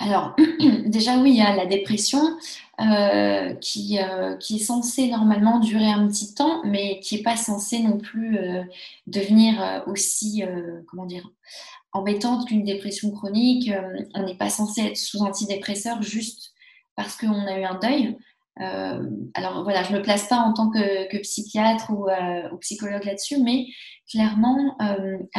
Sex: female